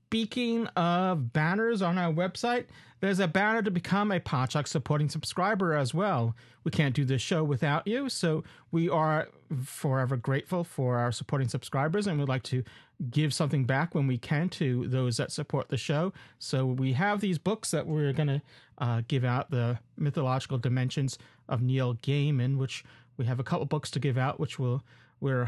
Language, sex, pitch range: English, male, 130-165 Hz